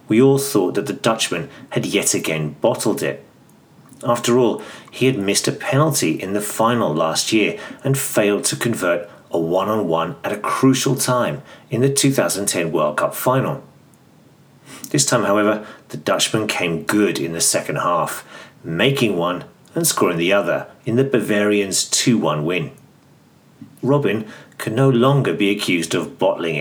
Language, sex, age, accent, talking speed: English, male, 40-59, British, 155 wpm